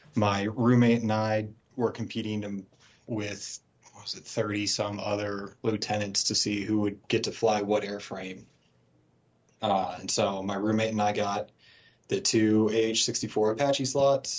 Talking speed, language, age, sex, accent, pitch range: 145 wpm, English, 30-49, male, American, 100-115 Hz